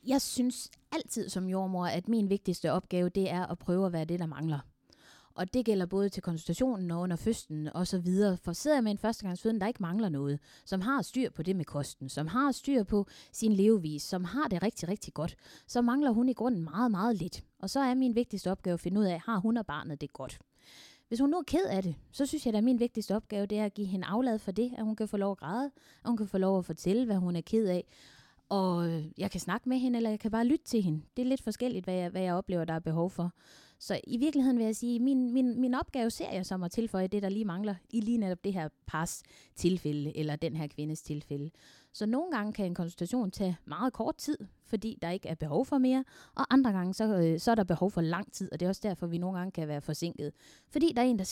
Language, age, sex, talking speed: Danish, 20-39, female, 260 wpm